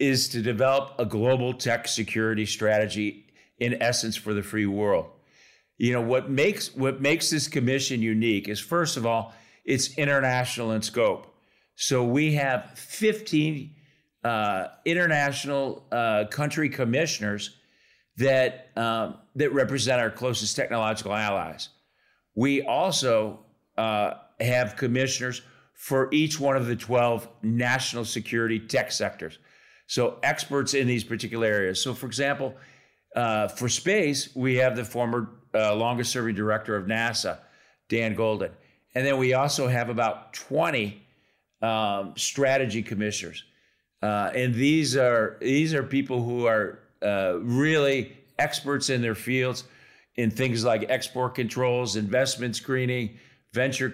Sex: male